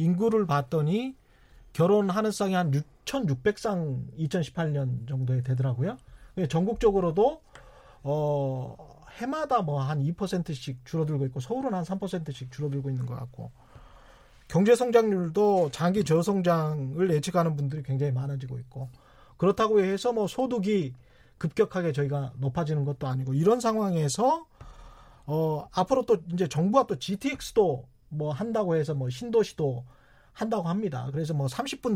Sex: male